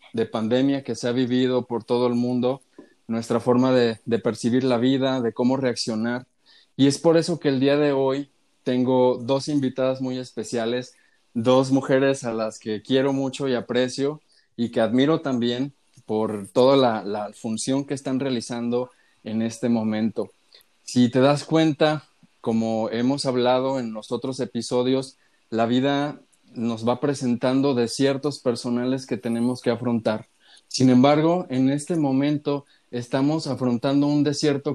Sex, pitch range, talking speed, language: male, 120-140 Hz, 155 wpm, Spanish